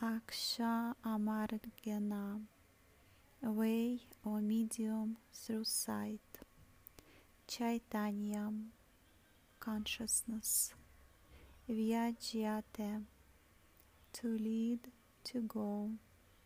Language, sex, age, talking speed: English, female, 30-49, 50 wpm